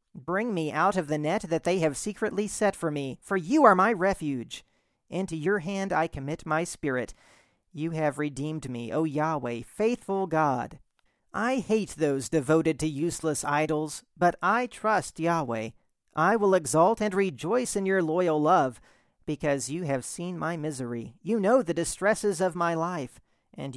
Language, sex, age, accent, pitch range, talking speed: English, male, 40-59, American, 150-200 Hz, 170 wpm